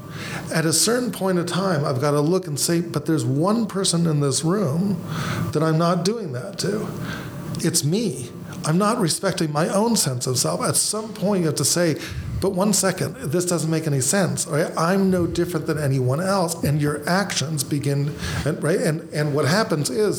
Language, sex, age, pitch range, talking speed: English, male, 40-59, 130-170 Hz, 200 wpm